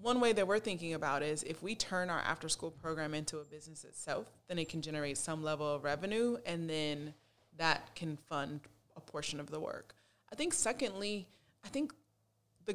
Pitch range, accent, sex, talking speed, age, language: 175-260 Hz, American, female, 195 wpm, 20-39, English